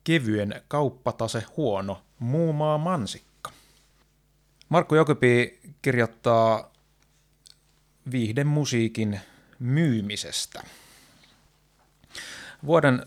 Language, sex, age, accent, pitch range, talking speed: Finnish, male, 30-49, native, 110-140 Hz, 50 wpm